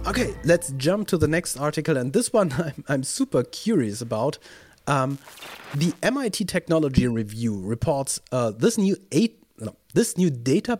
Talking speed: 160 wpm